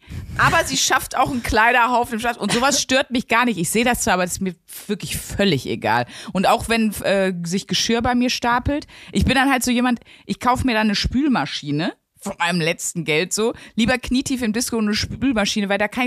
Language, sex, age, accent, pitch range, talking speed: German, female, 30-49, German, 170-230 Hz, 225 wpm